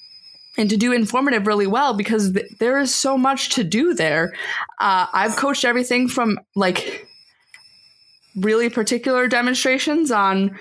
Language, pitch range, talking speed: English, 195-250 Hz, 135 wpm